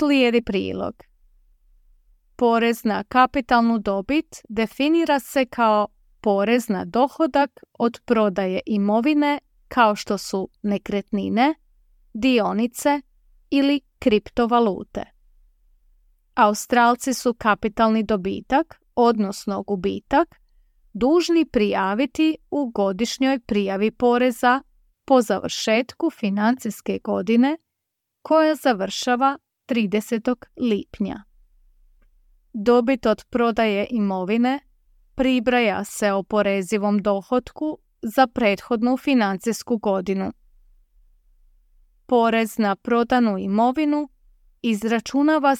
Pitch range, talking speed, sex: 200-255 Hz, 80 wpm, female